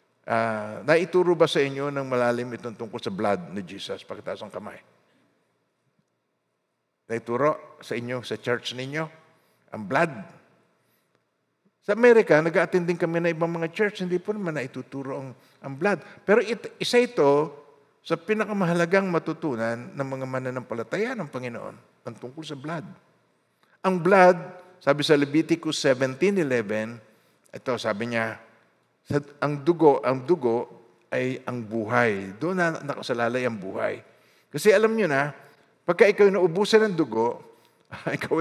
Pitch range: 130-180 Hz